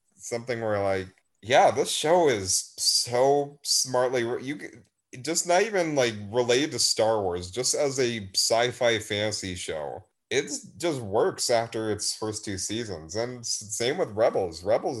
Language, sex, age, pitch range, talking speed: English, male, 30-49, 105-135 Hz, 150 wpm